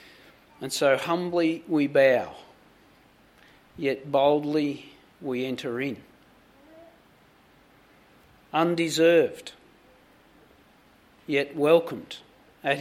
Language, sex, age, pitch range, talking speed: English, male, 50-69, 145-180 Hz, 65 wpm